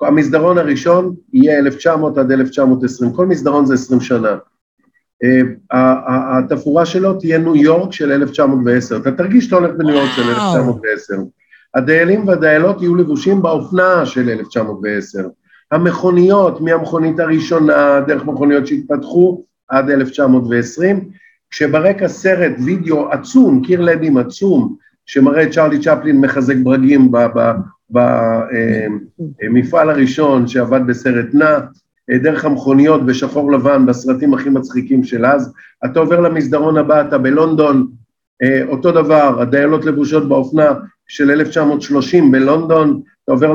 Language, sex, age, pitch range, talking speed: Hebrew, male, 50-69, 135-175 Hz, 120 wpm